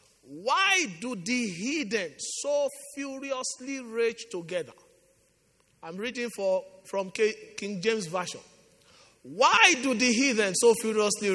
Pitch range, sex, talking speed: 190-285 Hz, male, 110 wpm